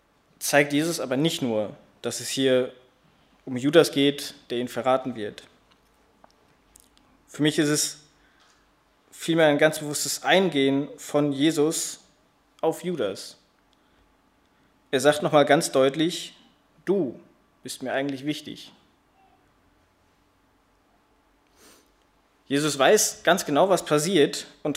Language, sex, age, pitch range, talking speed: German, male, 20-39, 130-155 Hz, 110 wpm